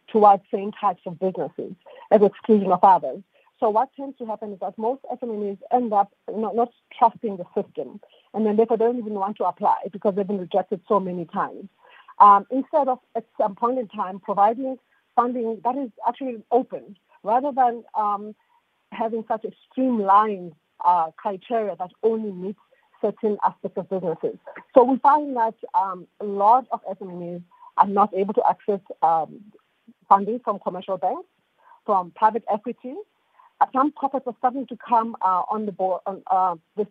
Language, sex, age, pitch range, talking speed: English, female, 40-59, 190-235 Hz, 170 wpm